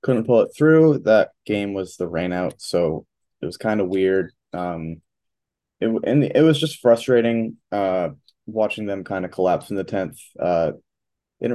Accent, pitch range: American, 90-110 Hz